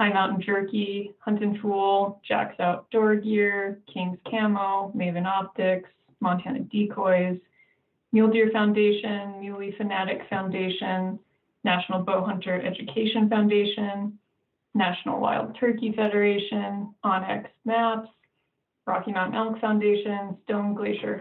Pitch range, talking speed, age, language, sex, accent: 185-215 Hz, 105 wpm, 20-39, English, female, American